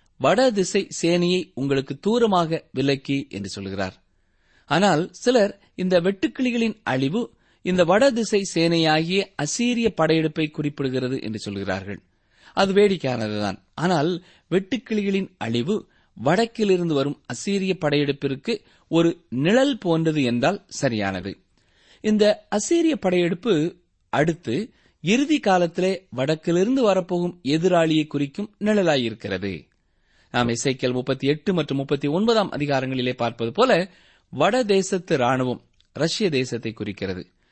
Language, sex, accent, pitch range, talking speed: Tamil, male, native, 125-195 Hz, 100 wpm